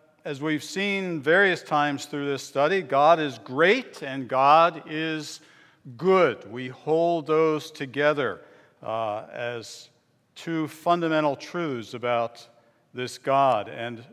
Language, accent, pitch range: English, American, 135-175 Hz